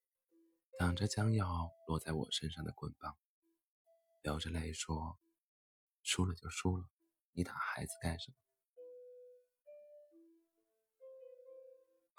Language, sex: Chinese, male